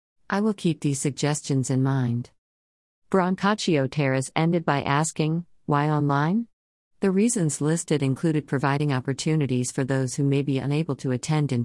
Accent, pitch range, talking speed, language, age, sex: American, 130-160 Hz, 150 wpm, English, 40-59, female